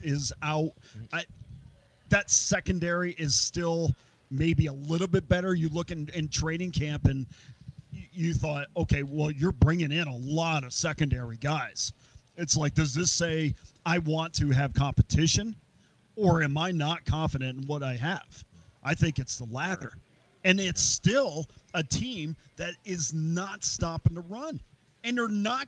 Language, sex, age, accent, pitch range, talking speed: English, male, 40-59, American, 140-180 Hz, 160 wpm